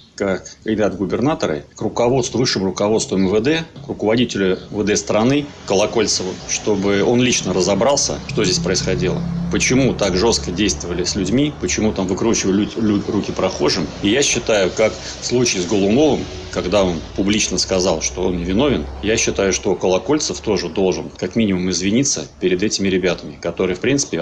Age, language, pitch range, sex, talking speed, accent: 30-49, Russian, 105-125 Hz, male, 150 wpm, native